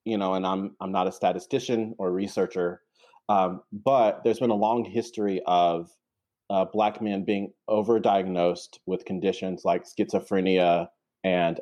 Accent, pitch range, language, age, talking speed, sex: American, 95-110 Hz, English, 30-49, 145 wpm, male